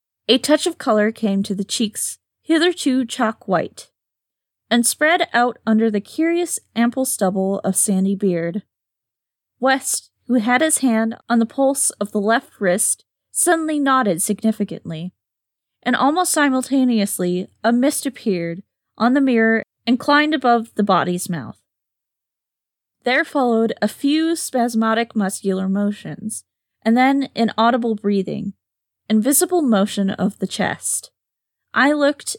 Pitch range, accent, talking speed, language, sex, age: 195-260 Hz, American, 130 wpm, English, female, 10-29